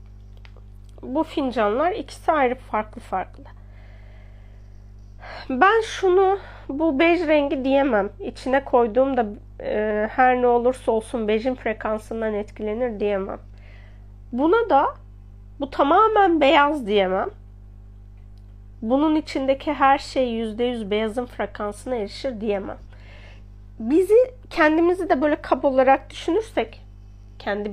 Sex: female